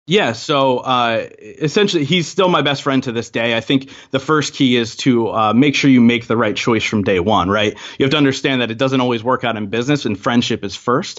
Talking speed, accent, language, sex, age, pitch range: 250 wpm, American, English, male, 20-39, 115-140 Hz